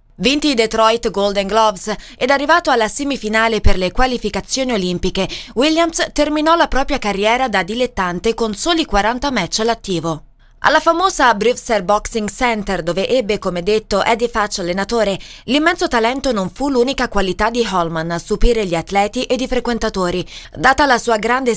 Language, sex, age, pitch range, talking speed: Italian, female, 20-39, 195-260 Hz, 155 wpm